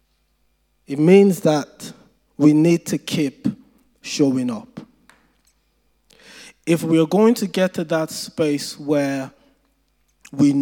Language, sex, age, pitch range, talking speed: English, male, 20-39, 135-205 Hz, 115 wpm